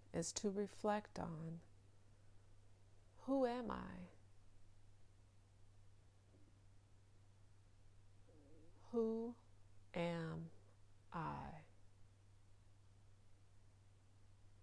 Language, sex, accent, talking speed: English, female, American, 40 wpm